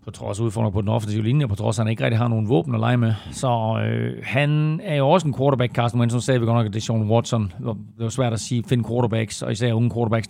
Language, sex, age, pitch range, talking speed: Danish, male, 40-59, 115-135 Hz, 290 wpm